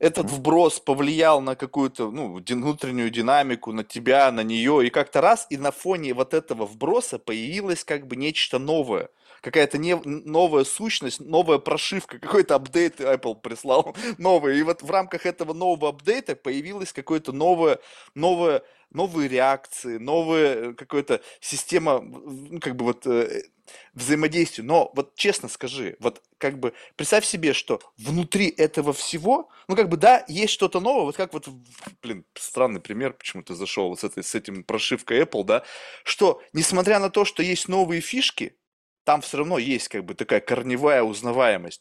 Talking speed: 160 wpm